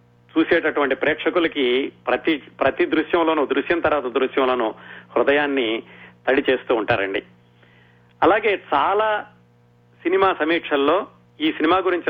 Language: Telugu